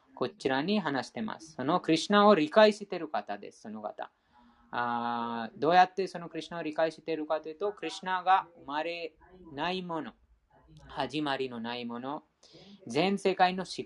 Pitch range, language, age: 145-195 Hz, Japanese, 20-39